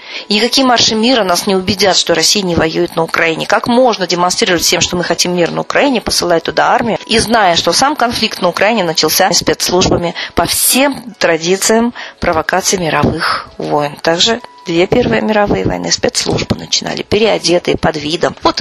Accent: native